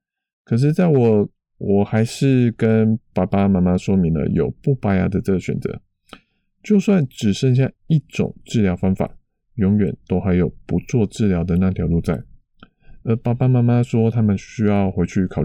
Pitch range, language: 95-120 Hz, Chinese